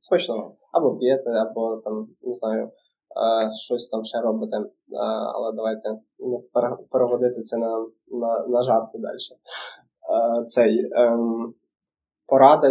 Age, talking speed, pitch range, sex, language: 20-39, 120 wpm, 115-130 Hz, male, Ukrainian